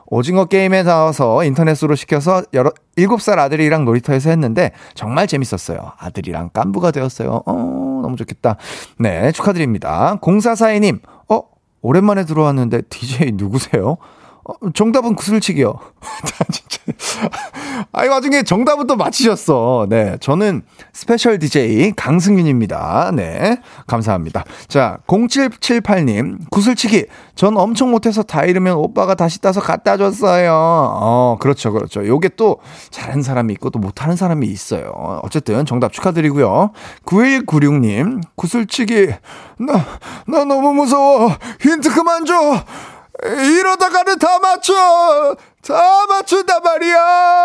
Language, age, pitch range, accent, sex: Korean, 30-49, 140-235 Hz, native, male